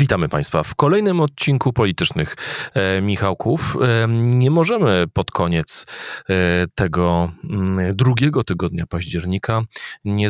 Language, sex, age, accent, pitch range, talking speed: Polish, male, 40-59, native, 85-115 Hz, 115 wpm